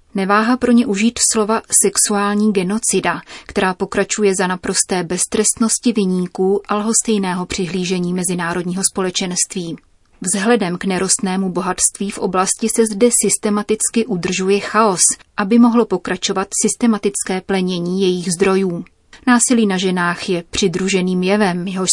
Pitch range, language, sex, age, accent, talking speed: 185-210 Hz, Czech, female, 30-49, native, 120 wpm